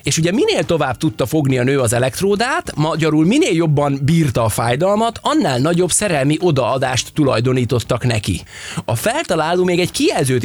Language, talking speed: Hungarian, 155 wpm